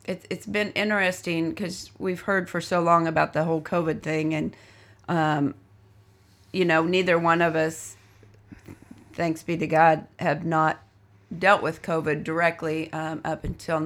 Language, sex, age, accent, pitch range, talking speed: English, female, 30-49, American, 150-170 Hz, 150 wpm